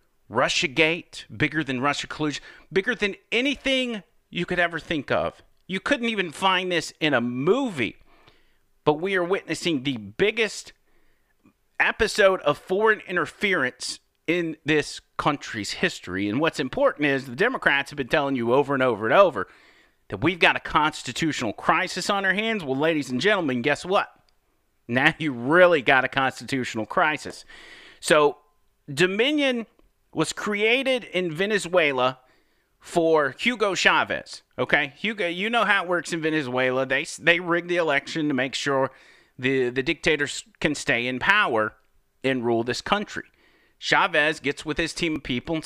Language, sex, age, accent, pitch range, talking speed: English, male, 40-59, American, 135-185 Hz, 155 wpm